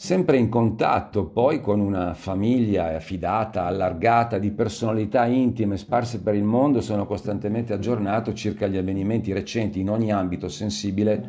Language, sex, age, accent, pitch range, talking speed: Italian, male, 50-69, native, 105-130 Hz, 145 wpm